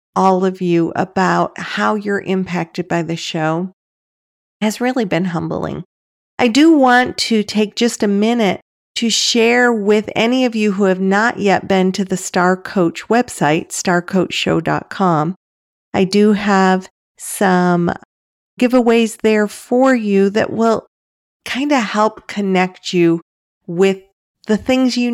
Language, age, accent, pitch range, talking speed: English, 40-59, American, 180-215 Hz, 140 wpm